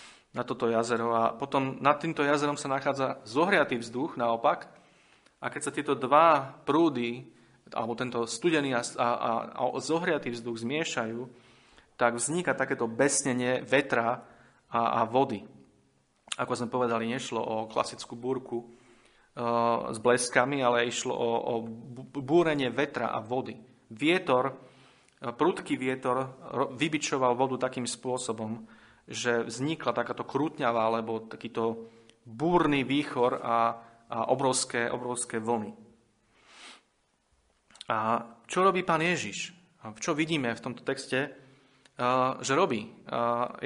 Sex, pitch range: male, 115-135 Hz